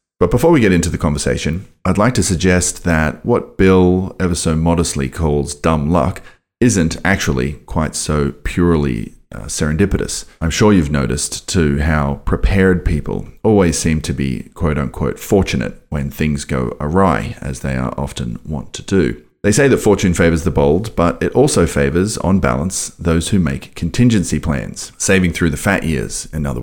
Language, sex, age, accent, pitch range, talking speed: English, male, 30-49, Australian, 75-90 Hz, 175 wpm